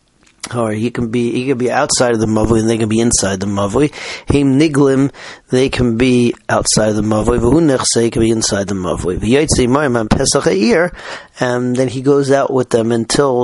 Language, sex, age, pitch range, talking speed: English, male, 40-59, 115-135 Hz, 210 wpm